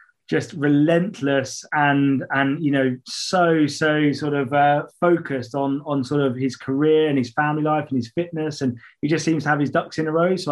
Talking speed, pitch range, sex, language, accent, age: 210 wpm, 140-155 Hz, male, English, British, 20-39